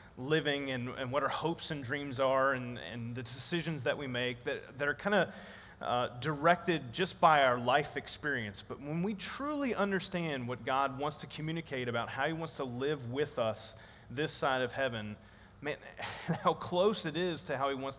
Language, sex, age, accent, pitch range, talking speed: English, male, 30-49, American, 120-165 Hz, 195 wpm